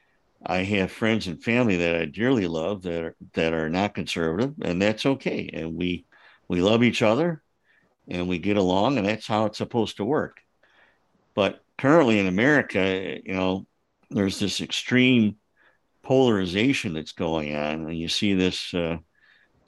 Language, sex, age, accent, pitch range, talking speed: English, male, 60-79, American, 85-110 Hz, 160 wpm